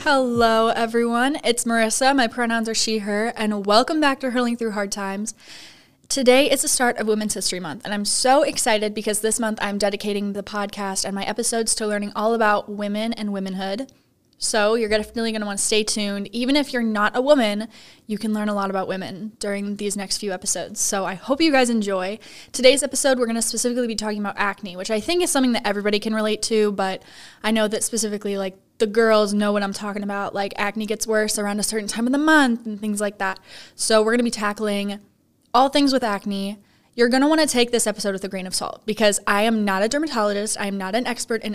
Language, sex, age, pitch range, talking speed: English, female, 20-39, 205-235 Hz, 235 wpm